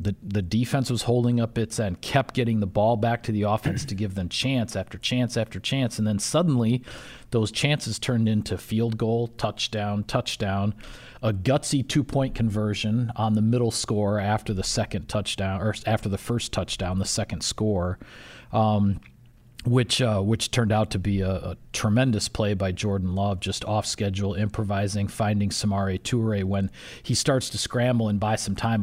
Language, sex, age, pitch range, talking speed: English, male, 40-59, 105-120 Hz, 180 wpm